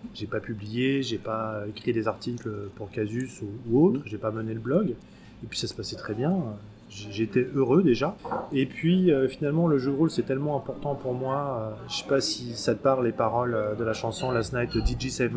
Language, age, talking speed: French, 20-39, 215 wpm